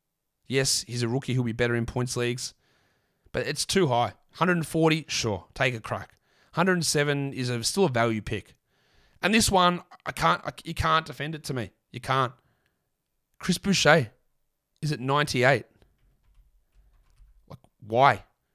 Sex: male